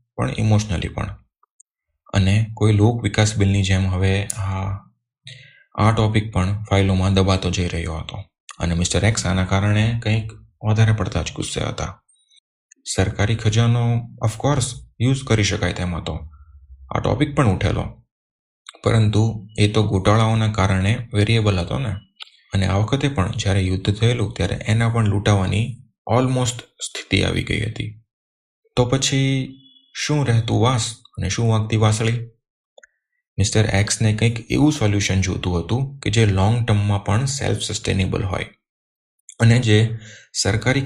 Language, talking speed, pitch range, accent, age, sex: Gujarati, 105 wpm, 95-115 Hz, native, 30-49, male